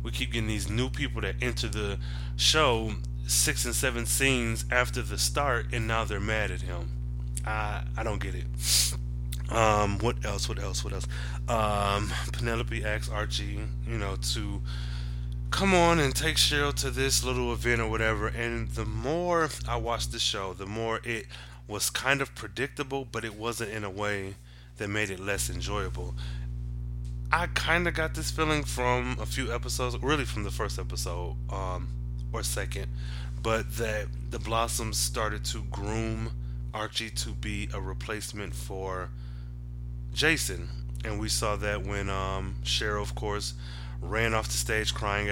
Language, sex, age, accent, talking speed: English, male, 20-39, American, 165 wpm